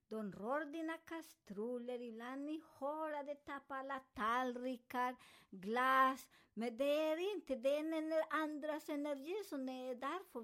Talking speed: 125 wpm